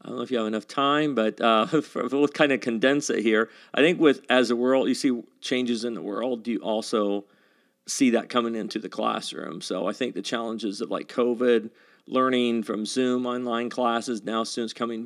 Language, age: English, 40-59